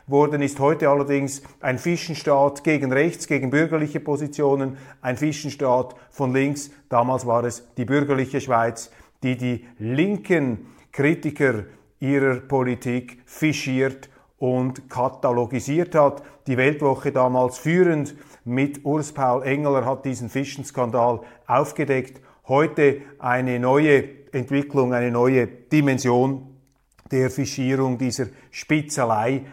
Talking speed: 110 wpm